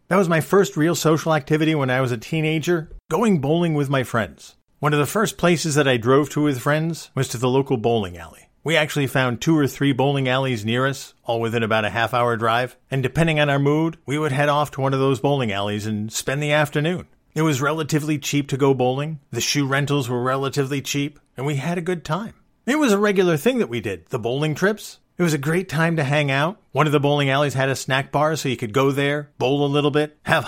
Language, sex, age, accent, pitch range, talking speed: English, male, 50-69, American, 130-160 Hz, 250 wpm